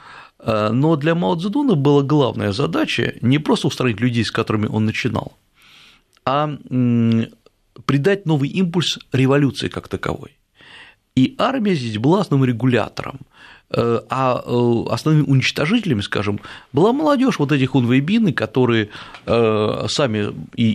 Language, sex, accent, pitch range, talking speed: Russian, male, native, 110-150 Hz, 115 wpm